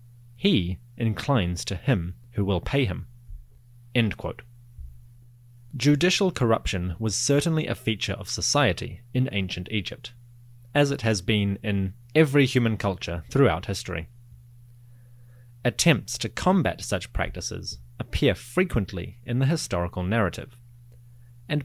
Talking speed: 120 wpm